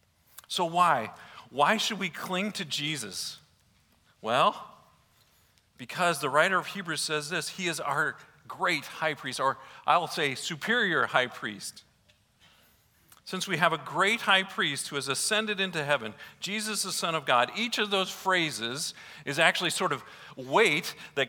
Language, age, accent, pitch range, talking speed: English, 50-69, American, 130-190 Hz, 160 wpm